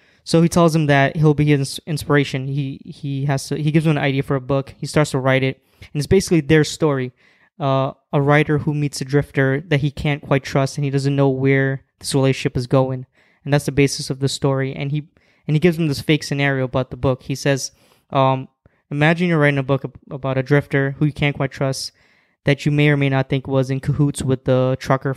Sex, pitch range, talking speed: male, 135-150 Hz, 240 wpm